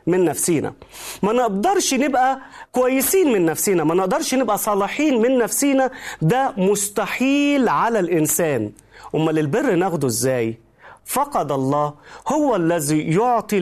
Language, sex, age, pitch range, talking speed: Arabic, male, 40-59, 180-290 Hz, 120 wpm